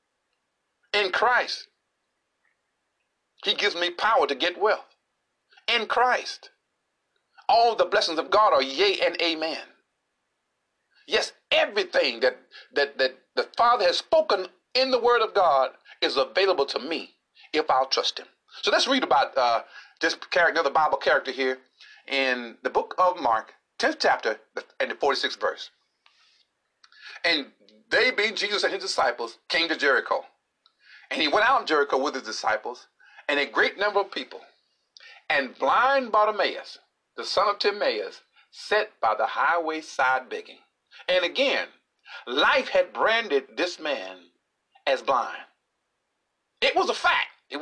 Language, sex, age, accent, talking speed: English, male, 40-59, American, 145 wpm